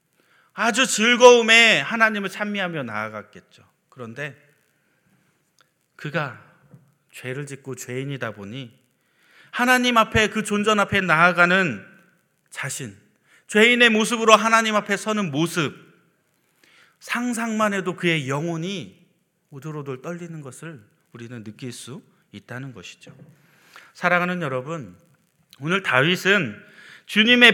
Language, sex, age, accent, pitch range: Korean, male, 40-59, native, 150-225 Hz